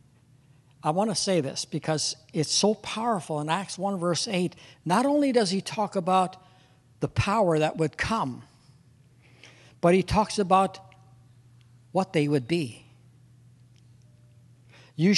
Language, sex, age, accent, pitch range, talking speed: English, male, 60-79, American, 125-180 Hz, 135 wpm